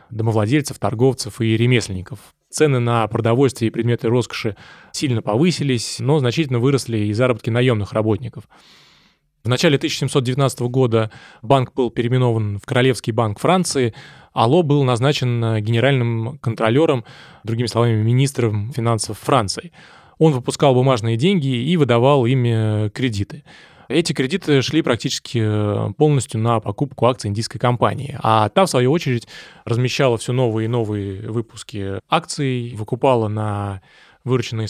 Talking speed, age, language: 125 wpm, 20-39, Russian